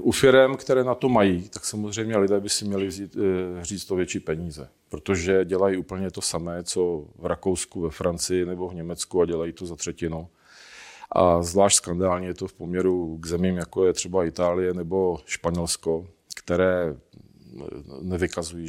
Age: 40-59